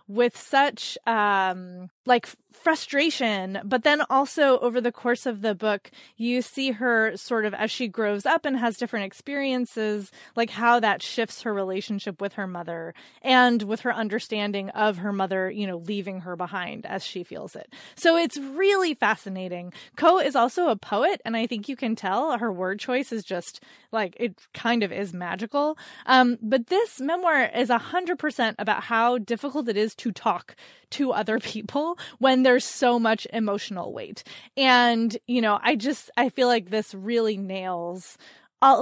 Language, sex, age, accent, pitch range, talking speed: English, female, 20-39, American, 195-250 Hz, 175 wpm